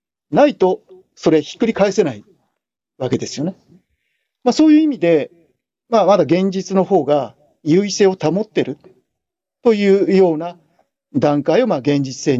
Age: 40-59